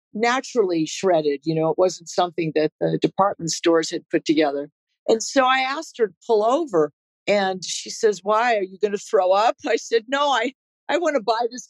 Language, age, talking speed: English, 50-69, 210 wpm